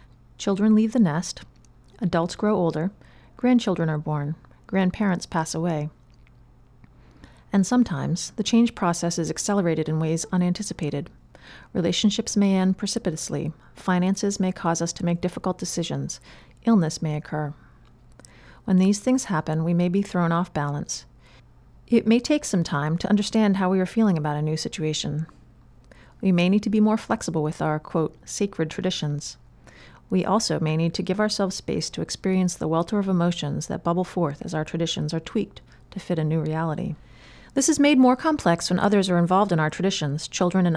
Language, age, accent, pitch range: English, 40-59, American, 155-200 Hz